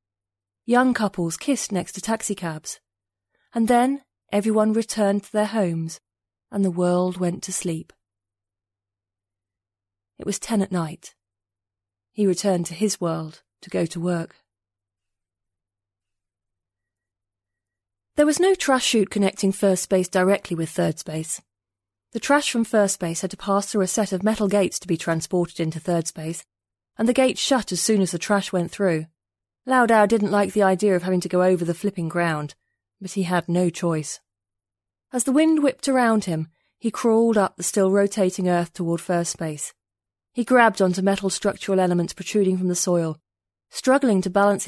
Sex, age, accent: female, 30-49, British